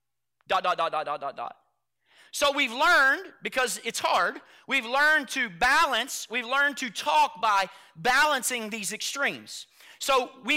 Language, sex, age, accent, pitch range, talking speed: English, male, 40-59, American, 210-285 Hz, 155 wpm